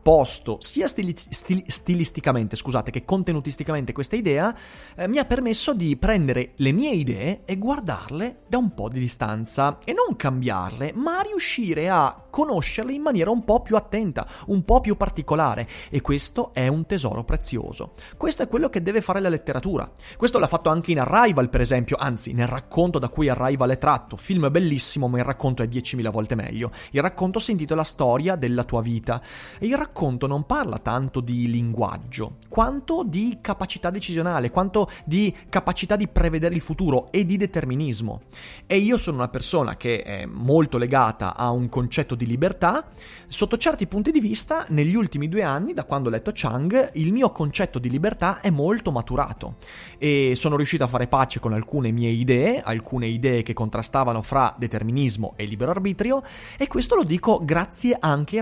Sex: male